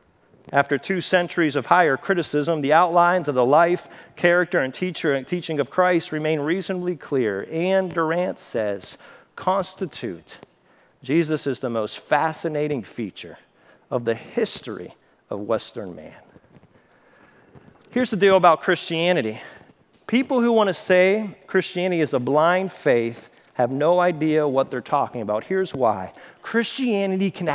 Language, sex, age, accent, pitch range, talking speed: English, male, 40-59, American, 145-195 Hz, 135 wpm